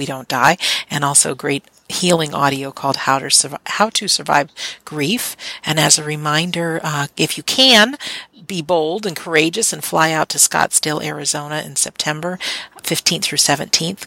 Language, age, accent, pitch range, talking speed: English, 50-69, American, 145-175 Hz, 160 wpm